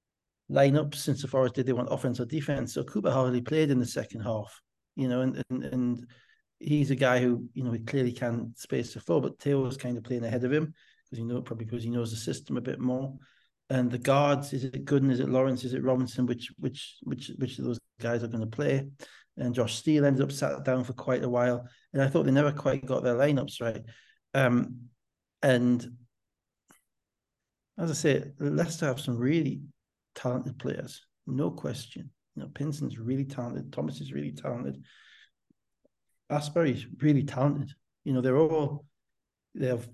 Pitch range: 120-140 Hz